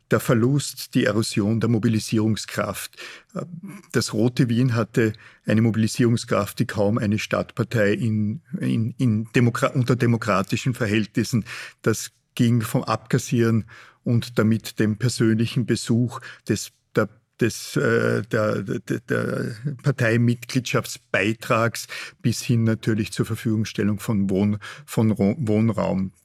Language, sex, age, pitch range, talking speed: German, male, 50-69, 105-125 Hz, 90 wpm